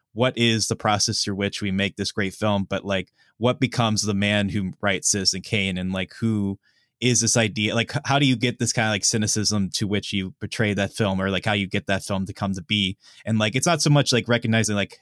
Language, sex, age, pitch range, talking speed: English, male, 20-39, 100-115 Hz, 250 wpm